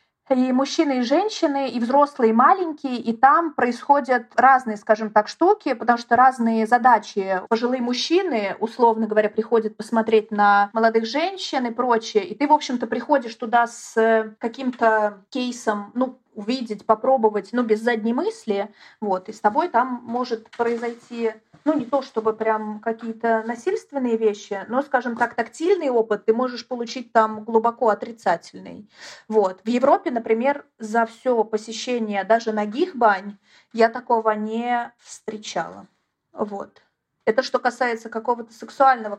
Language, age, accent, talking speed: Russian, 30-49, native, 140 wpm